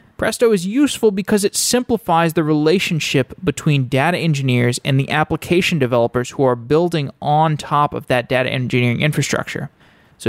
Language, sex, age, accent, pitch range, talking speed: English, male, 20-39, American, 130-165 Hz, 150 wpm